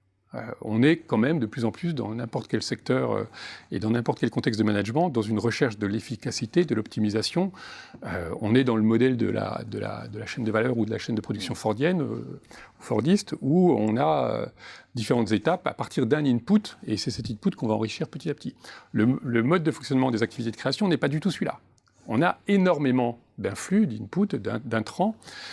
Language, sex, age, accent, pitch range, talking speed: French, male, 40-59, French, 110-155 Hz, 205 wpm